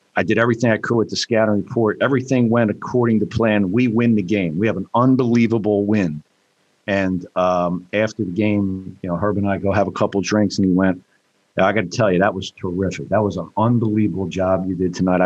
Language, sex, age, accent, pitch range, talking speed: English, male, 50-69, American, 105-125 Hz, 230 wpm